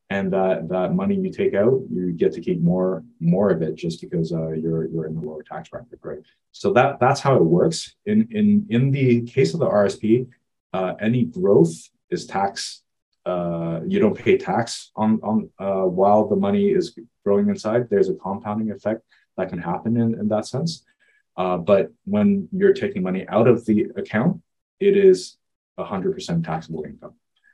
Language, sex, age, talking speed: English, male, 30-49, 185 wpm